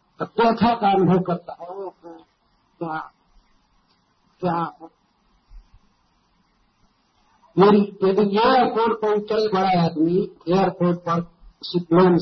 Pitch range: 170-215 Hz